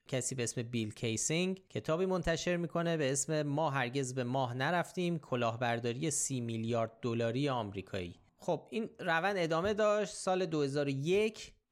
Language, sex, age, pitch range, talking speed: Persian, male, 30-49, 115-150 Hz, 140 wpm